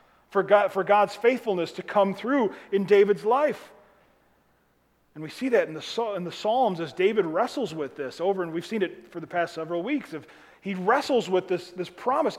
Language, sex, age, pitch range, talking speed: English, male, 30-49, 155-230 Hz, 205 wpm